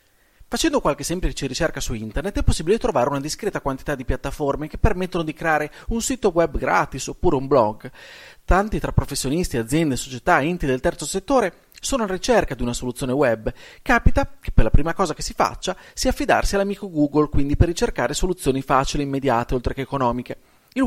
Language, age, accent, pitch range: Italian, 30-49, native, 130-180 Hz